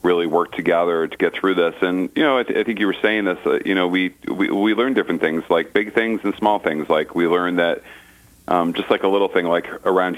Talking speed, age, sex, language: 265 wpm, 40-59, male, English